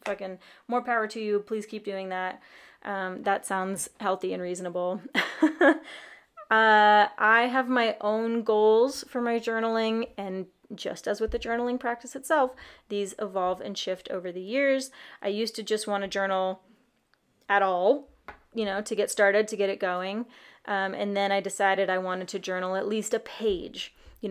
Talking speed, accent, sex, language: 175 wpm, American, female, English